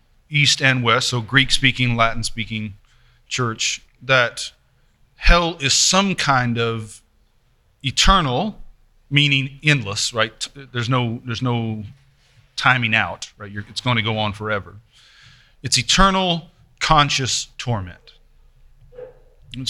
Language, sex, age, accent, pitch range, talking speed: English, male, 30-49, American, 115-140 Hz, 115 wpm